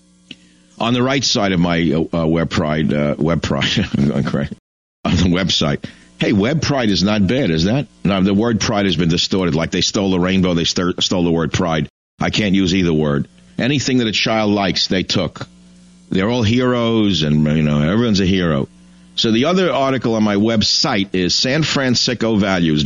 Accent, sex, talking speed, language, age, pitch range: American, male, 200 wpm, English, 50-69, 80-125 Hz